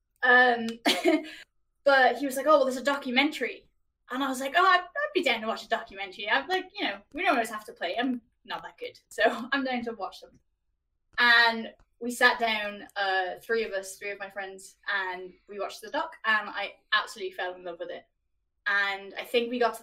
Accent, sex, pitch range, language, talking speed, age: British, female, 200-265 Hz, English, 220 wpm, 10-29